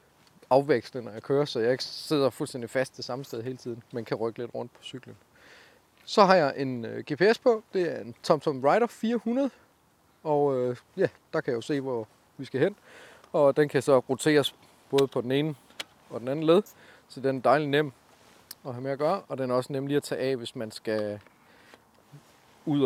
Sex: male